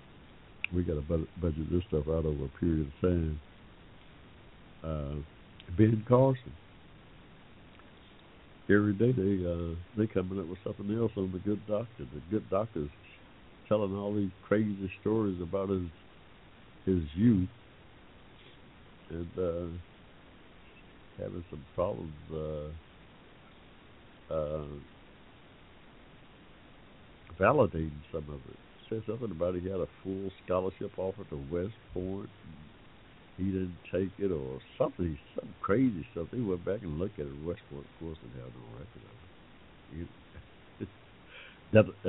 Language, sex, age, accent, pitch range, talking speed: English, male, 60-79, American, 80-100 Hz, 135 wpm